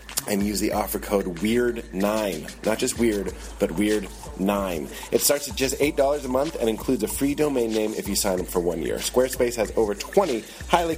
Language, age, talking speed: English, 30-49, 195 wpm